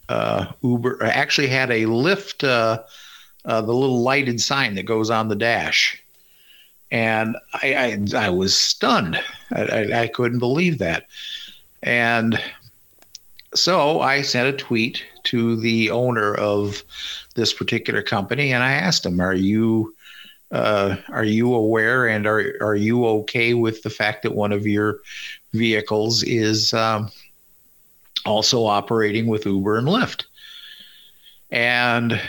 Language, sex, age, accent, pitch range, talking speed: English, male, 50-69, American, 105-125 Hz, 140 wpm